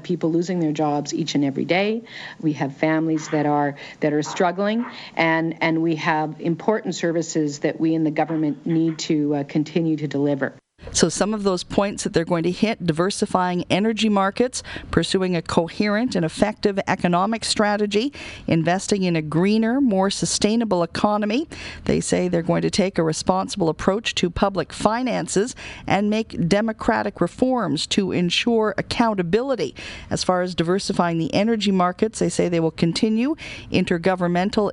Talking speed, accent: 160 wpm, American